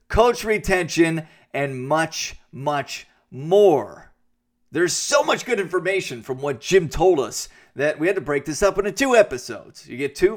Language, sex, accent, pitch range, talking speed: English, male, American, 135-230 Hz, 170 wpm